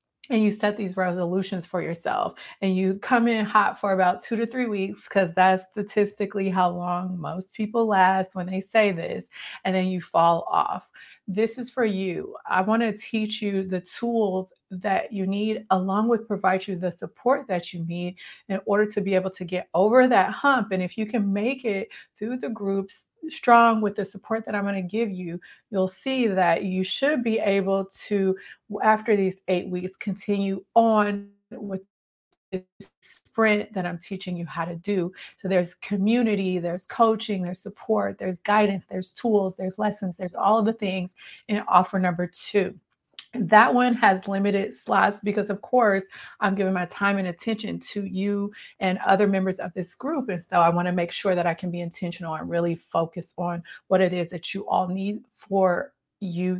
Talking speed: 190 wpm